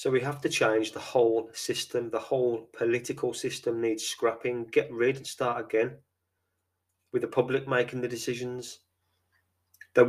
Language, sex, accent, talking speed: English, male, British, 155 wpm